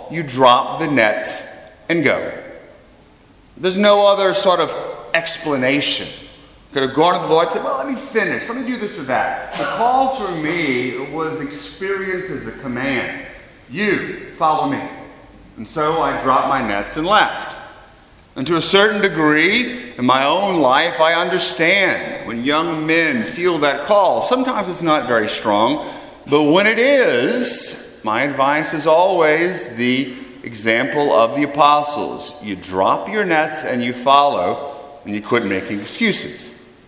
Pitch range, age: 145-200 Hz, 40-59